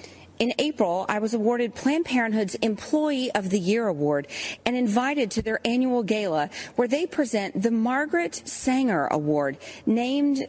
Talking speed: 150 wpm